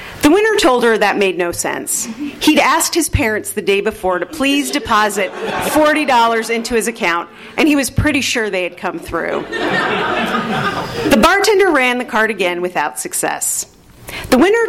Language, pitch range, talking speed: English, 185-270 Hz, 170 wpm